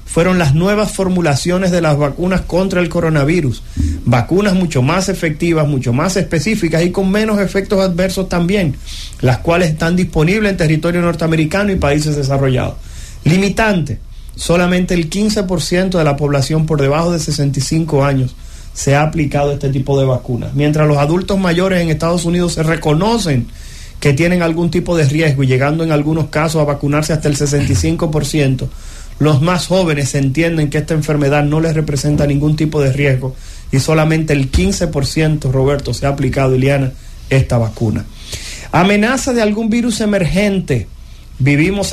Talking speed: 155 wpm